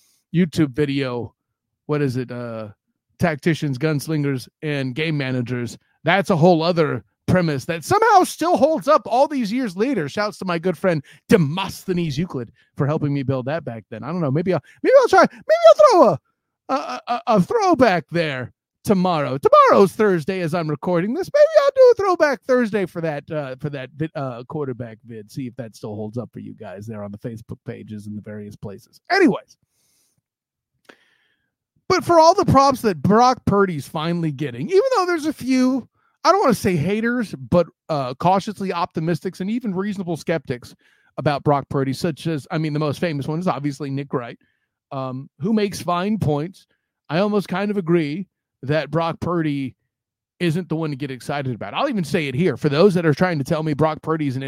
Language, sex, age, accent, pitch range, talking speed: English, male, 30-49, American, 135-200 Hz, 195 wpm